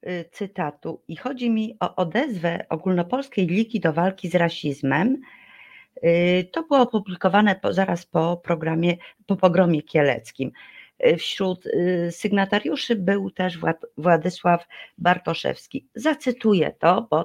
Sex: female